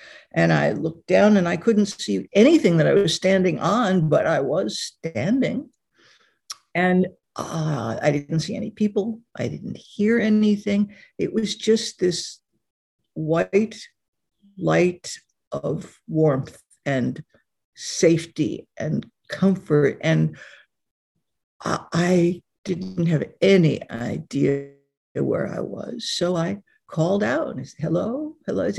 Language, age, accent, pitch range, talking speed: English, 60-79, American, 155-210 Hz, 125 wpm